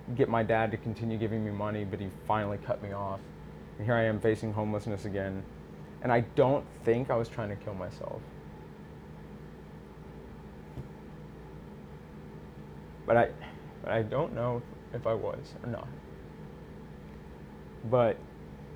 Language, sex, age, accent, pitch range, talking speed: English, male, 20-39, American, 75-115 Hz, 135 wpm